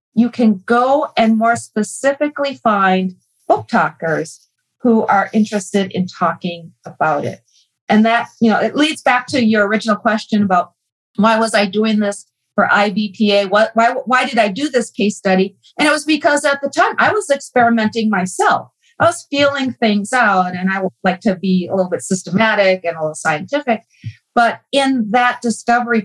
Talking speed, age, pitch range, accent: 180 wpm, 40-59, 190-245 Hz, American